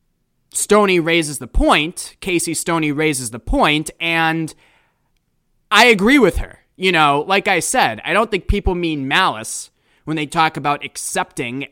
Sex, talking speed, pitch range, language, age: male, 155 wpm, 135-195 Hz, English, 20-39